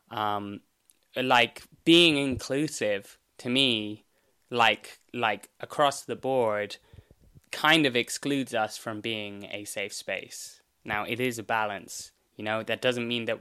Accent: British